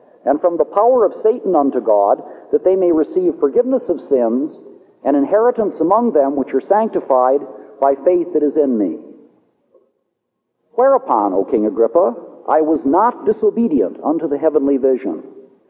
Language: English